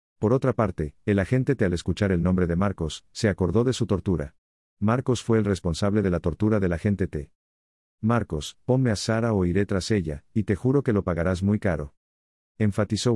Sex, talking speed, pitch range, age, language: male, 200 wpm, 80-105 Hz, 50-69, Spanish